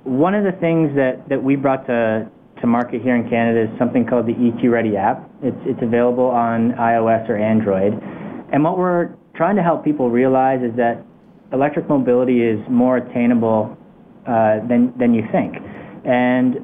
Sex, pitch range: male, 115-135 Hz